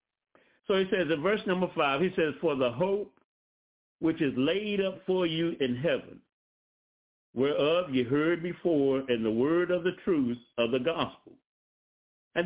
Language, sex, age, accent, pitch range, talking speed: English, male, 60-79, American, 125-175 Hz, 165 wpm